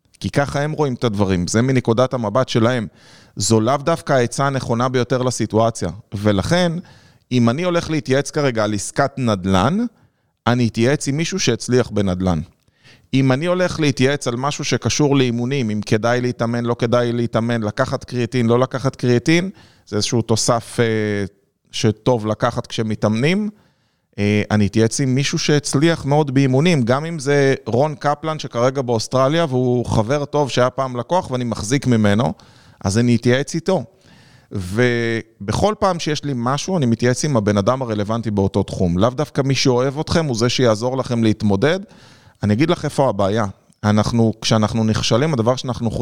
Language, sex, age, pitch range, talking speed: Hebrew, male, 30-49, 110-140 Hz, 150 wpm